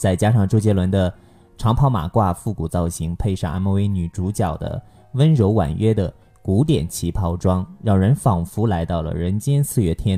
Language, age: Chinese, 20-39